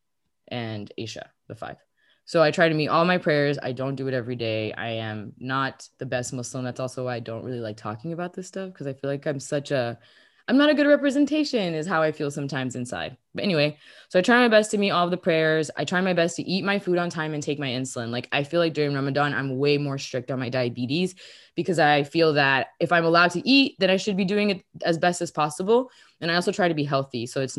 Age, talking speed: 20-39, 260 wpm